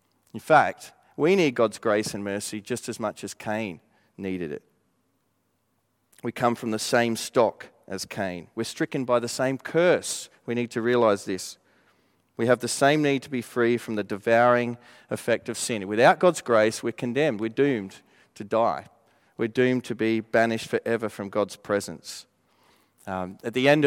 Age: 40-59